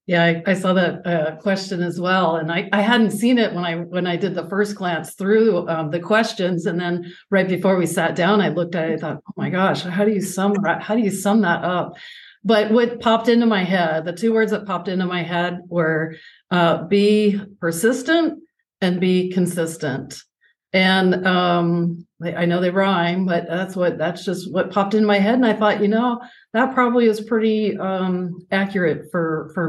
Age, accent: 50-69, American